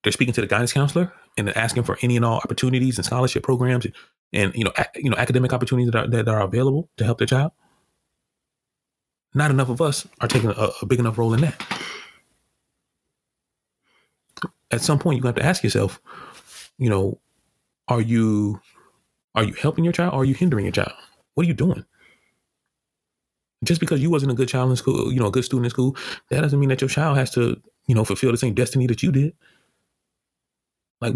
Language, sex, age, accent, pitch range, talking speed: English, male, 30-49, American, 110-135 Hz, 210 wpm